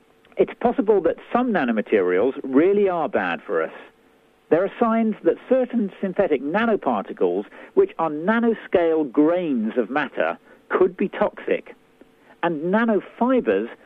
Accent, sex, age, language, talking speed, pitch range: British, male, 50-69, English, 120 wpm, 170-250 Hz